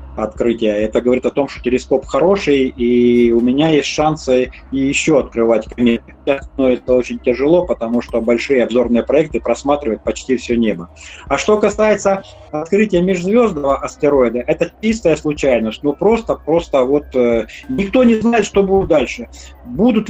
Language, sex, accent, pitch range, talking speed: Russian, male, native, 130-190 Hz, 145 wpm